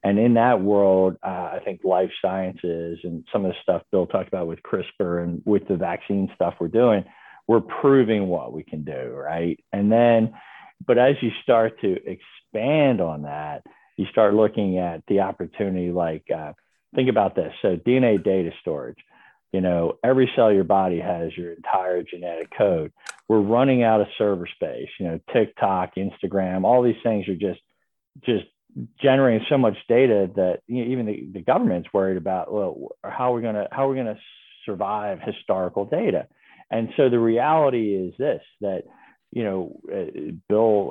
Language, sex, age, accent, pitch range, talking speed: English, male, 40-59, American, 90-110 Hz, 175 wpm